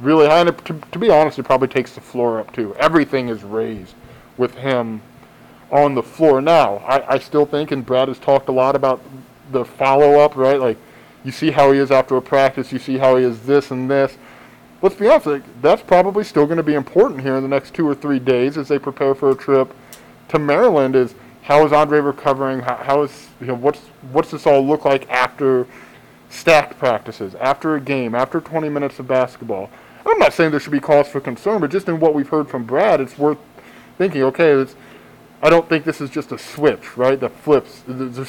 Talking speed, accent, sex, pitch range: 220 wpm, American, male, 130-150 Hz